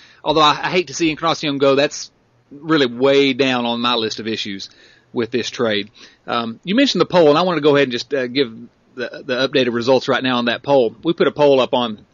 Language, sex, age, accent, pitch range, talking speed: English, male, 30-49, American, 120-145 Hz, 240 wpm